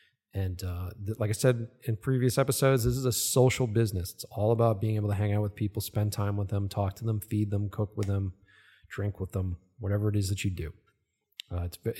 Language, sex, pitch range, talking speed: English, male, 105-130 Hz, 235 wpm